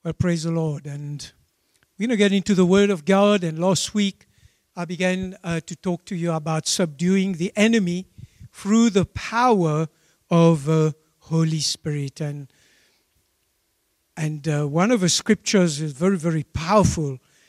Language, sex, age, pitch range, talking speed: English, male, 60-79, 160-205 Hz, 160 wpm